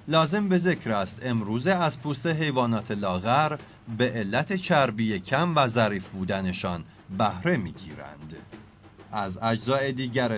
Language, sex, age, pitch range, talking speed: Persian, male, 40-59, 110-140 Hz, 120 wpm